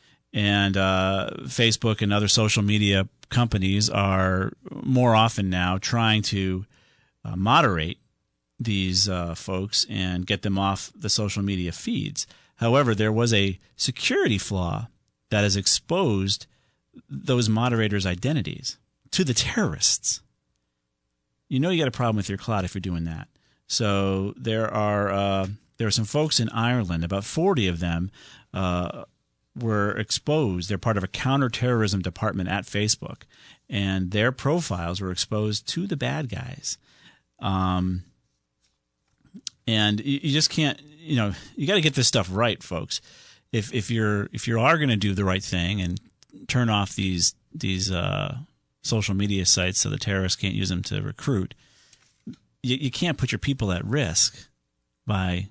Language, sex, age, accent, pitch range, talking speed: English, male, 40-59, American, 95-120 Hz, 155 wpm